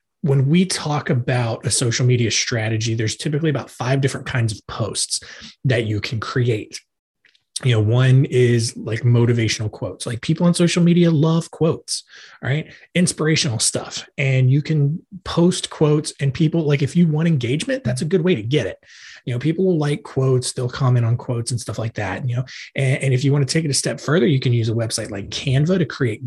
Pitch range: 120-155 Hz